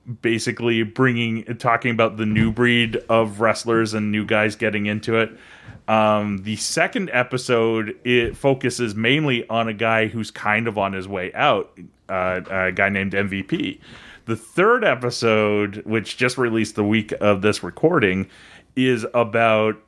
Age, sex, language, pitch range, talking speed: 30-49, male, English, 110-135 Hz, 150 wpm